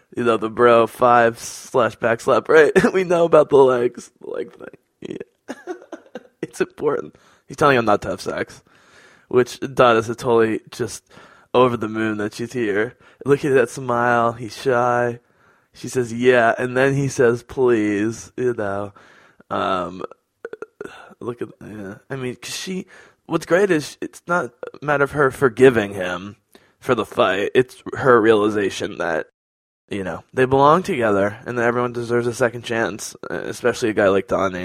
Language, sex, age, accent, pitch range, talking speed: English, male, 20-39, American, 105-135 Hz, 165 wpm